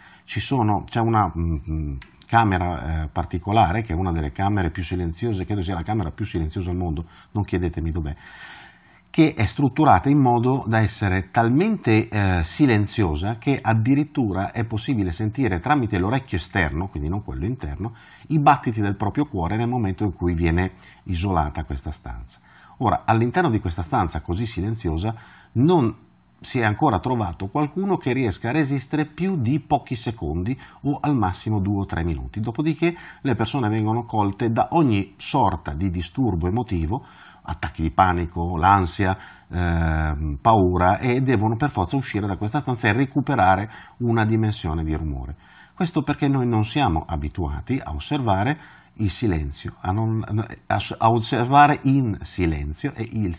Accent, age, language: native, 40-59, Italian